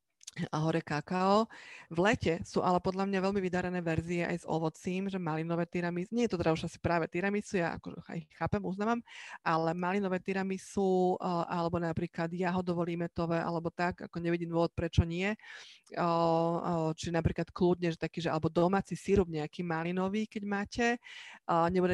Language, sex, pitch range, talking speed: Slovak, female, 165-185 Hz, 160 wpm